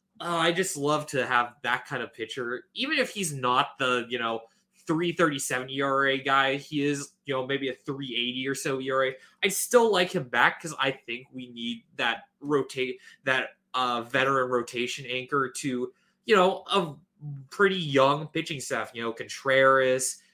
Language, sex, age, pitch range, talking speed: English, male, 20-39, 125-165 Hz, 170 wpm